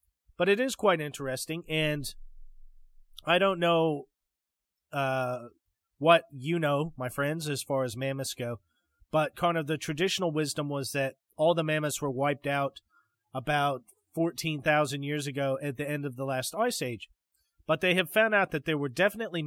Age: 30-49